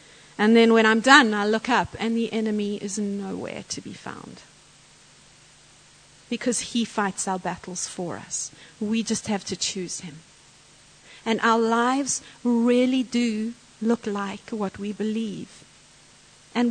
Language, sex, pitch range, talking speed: English, female, 195-240 Hz, 145 wpm